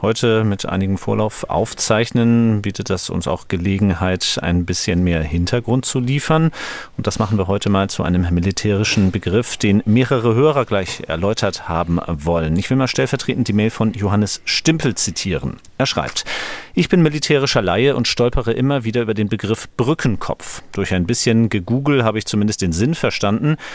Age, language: 40-59, German